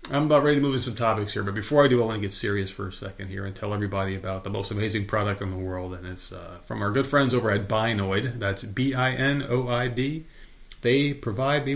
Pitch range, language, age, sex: 100-130 Hz, English, 30-49, male